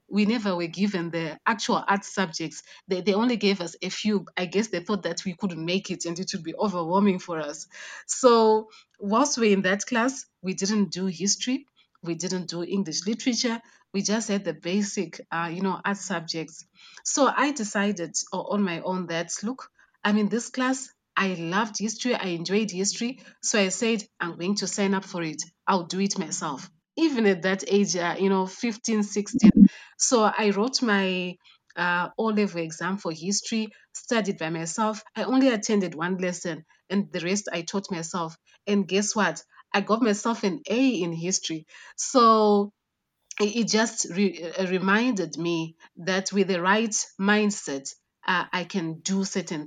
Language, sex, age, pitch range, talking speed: English, female, 30-49, 175-215 Hz, 175 wpm